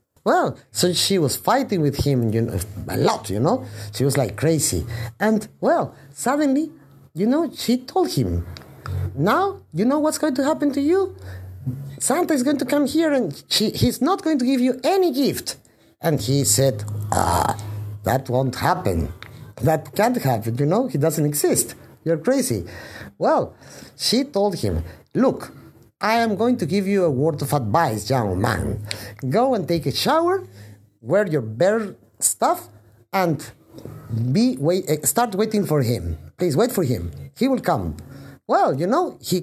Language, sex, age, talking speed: English, male, 50-69, 165 wpm